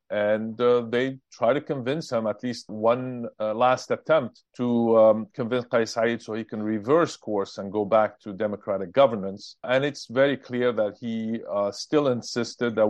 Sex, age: male, 50-69